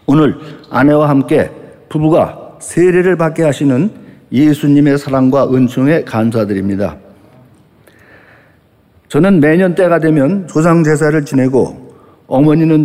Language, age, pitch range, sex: Korean, 50-69, 135-170 Hz, male